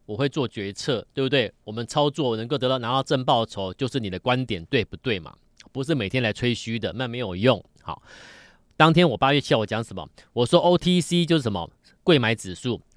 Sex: male